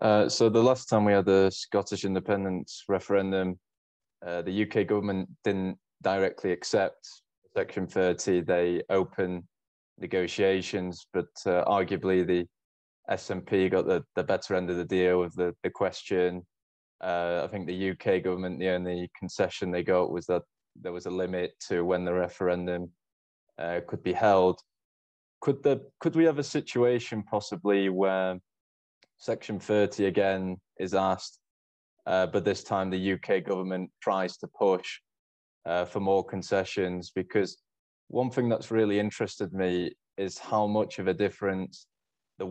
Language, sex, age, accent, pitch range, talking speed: English, male, 20-39, British, 90-100 Hz, 150 wpm